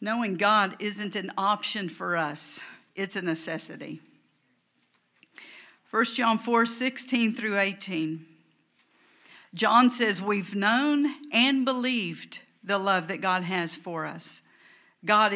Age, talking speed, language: 50-69, 115 wpm, English